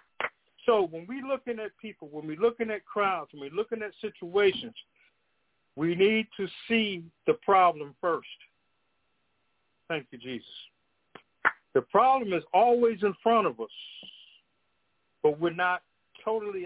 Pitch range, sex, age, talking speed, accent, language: 155-200 Hz, male, 50-69, 135 wpm, American, English